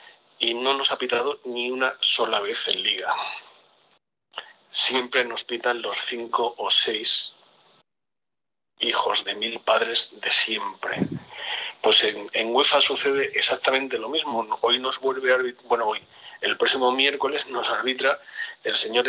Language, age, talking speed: Spanish, 40-59, 145 wpm